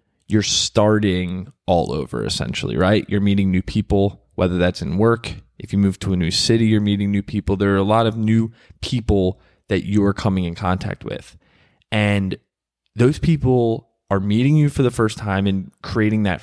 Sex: male